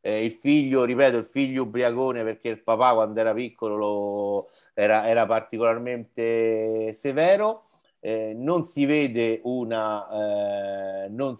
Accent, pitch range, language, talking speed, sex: native, 110-140 Hz, Italian, 130 wpm, male